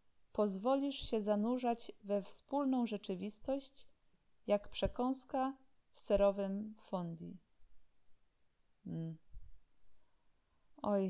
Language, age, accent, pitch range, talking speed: Polish, 20-39, native, 195-245 Hz, 65 wpm